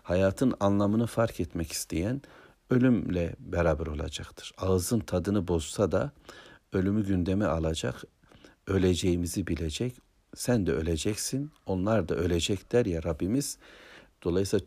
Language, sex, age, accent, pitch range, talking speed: Turkish, male, 60-79, native, 85-110 Hz, 105 wpm